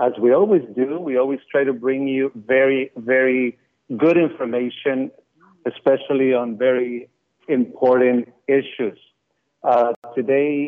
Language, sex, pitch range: English, male, 125-145 Hz